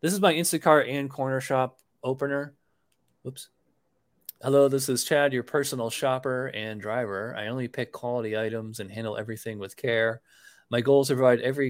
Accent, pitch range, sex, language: American, 120-155 Hz, male, English